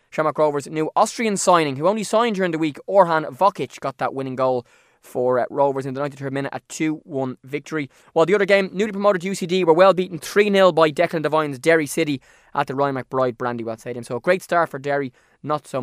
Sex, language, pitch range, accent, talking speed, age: male, English, 140-190 Hz, Irish, 215 wpm, 20-39